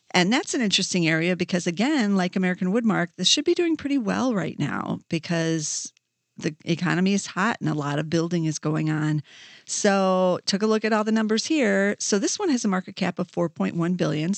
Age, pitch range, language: 40-59, 165-205 Hz, English